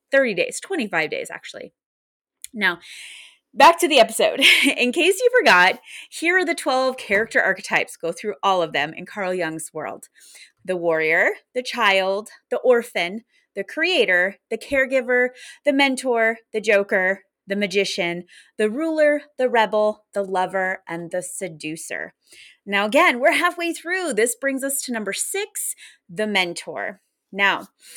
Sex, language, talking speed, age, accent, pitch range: female, English, 145 wpm, 20-39, American, 185-295 Hz